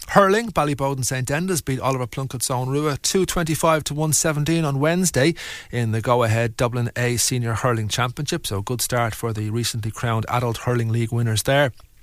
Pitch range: 115-155 Hz